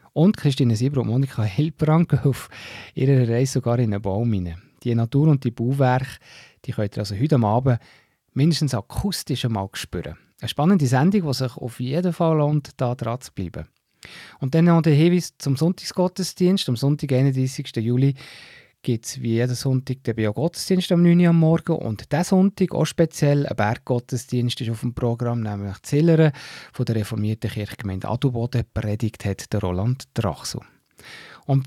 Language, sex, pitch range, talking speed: German, male, 110-145 Hz, 165 wpm